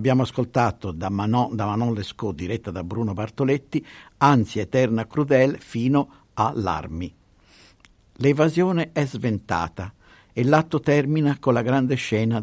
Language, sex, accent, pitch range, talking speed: Italian, male, native, 100-135 Hz, 125 wpm